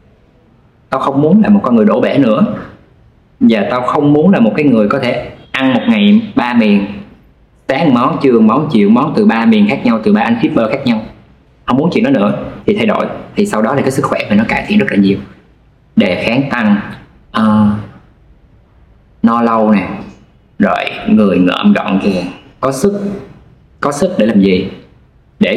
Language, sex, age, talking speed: Vietnamese, male, 20-39, 200 wpm